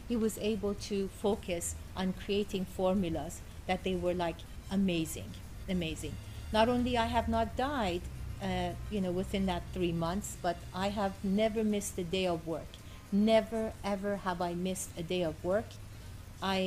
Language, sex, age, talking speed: English, female, 50-69, 165 wpm